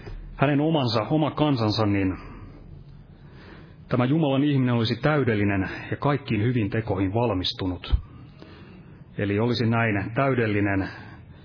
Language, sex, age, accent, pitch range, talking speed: Finnish, male, 30-49, native, 100-125 Hz, 100 wpm